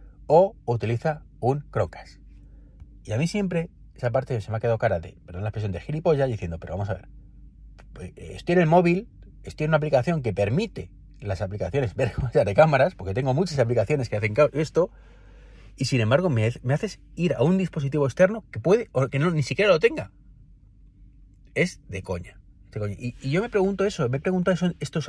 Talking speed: 200 wpm